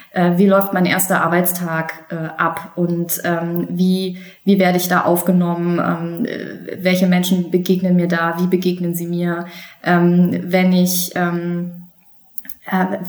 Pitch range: 175-200 Hz